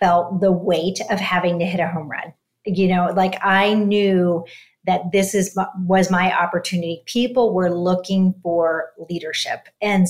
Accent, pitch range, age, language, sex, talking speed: American, 170-195 Hz, 40-59, English, female, 165 wpm